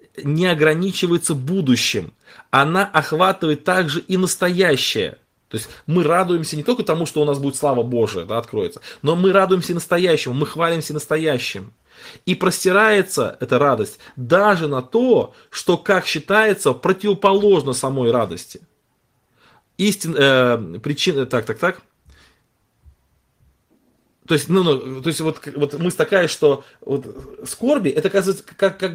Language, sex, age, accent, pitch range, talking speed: Russian, male, 20-39, native, 135-190 Hz, 120 wpm